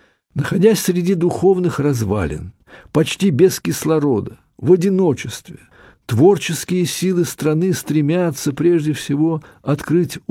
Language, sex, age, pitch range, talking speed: Russian, male, 60-79, 120-170 Hz, 95 wpm